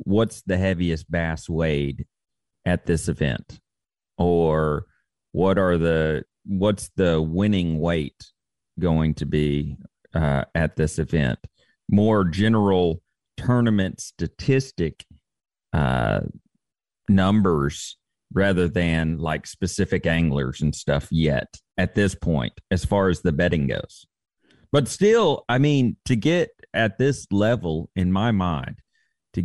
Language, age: English, 40-59